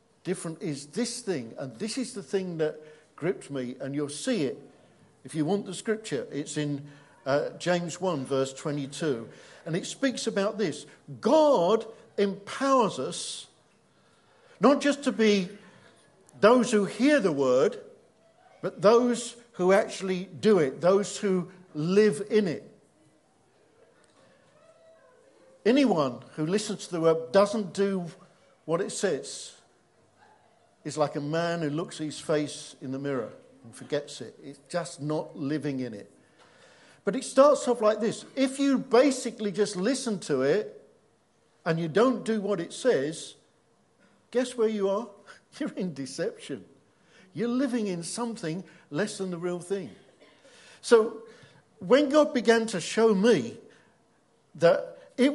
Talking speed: 145 wpm